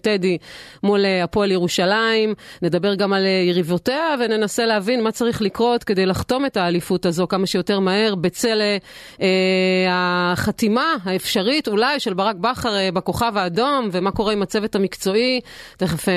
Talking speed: 140 wpm